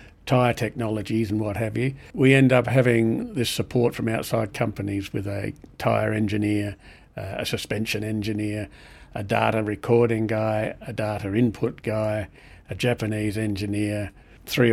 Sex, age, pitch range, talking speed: male, 50-69, 105-120 Hz, 145 wpm